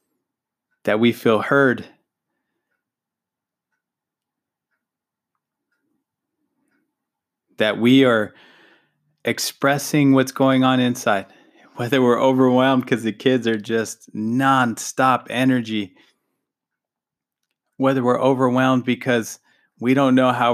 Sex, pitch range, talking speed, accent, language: male, 115-135 Hz, 90 wpm, American, English